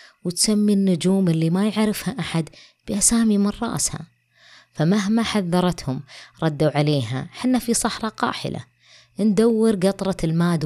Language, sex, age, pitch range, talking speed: Arabic, female, 20-39, 145-210 Hz, 115 wpm